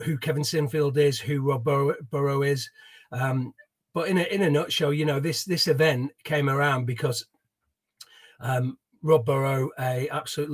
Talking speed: 160 wpm